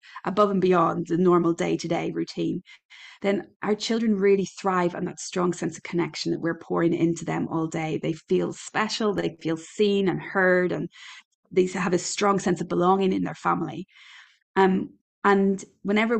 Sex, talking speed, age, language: female, 175 wpm, 20-39, English